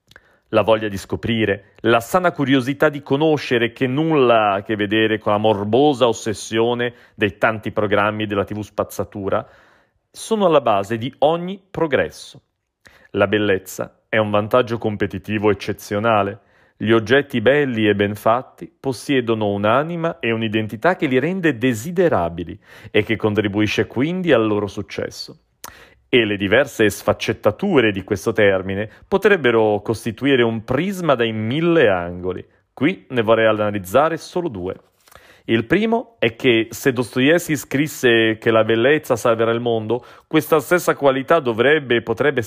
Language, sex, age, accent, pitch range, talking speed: Italian, male, 40-59, native, 105-135 Hz, 135 wpm